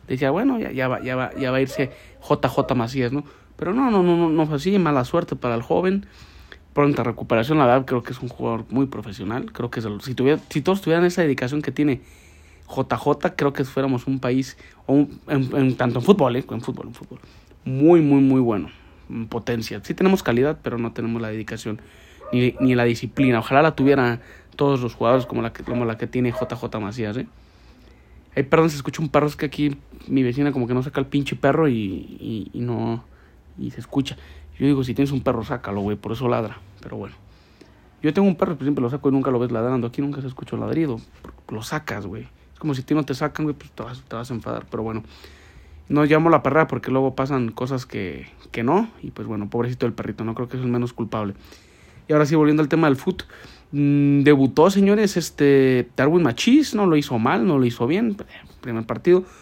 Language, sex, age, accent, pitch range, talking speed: Spanish, male, 30-49, Mexican, 115-145 Hz, 230 wpm